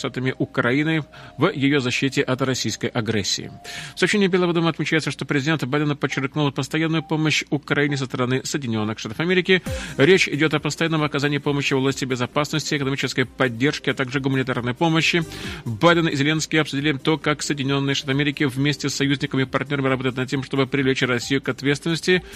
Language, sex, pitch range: Russian, male, 135-155 Hz